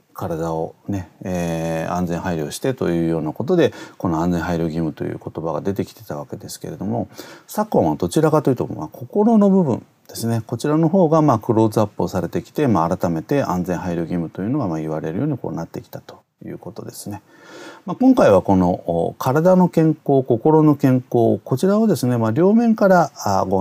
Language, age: Japanese, 40-59